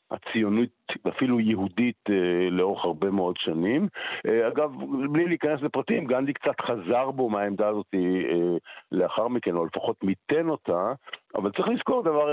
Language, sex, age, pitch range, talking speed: Hebrew, male, 50-69, 100-140 Hz, 130 wpm